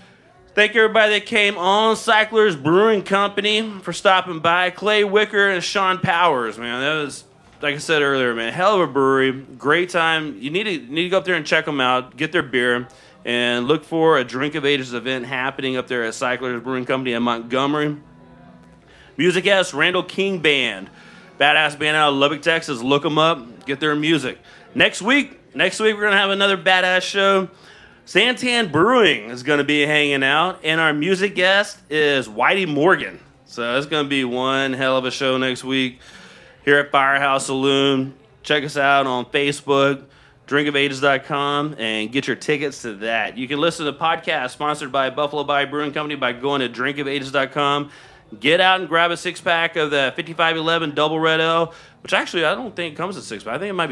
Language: English